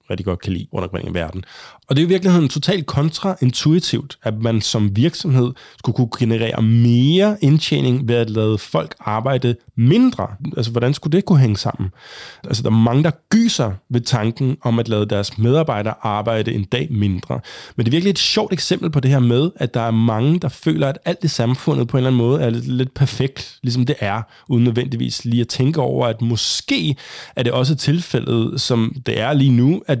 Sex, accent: male, native